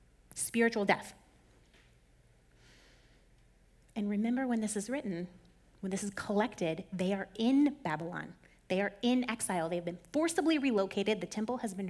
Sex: female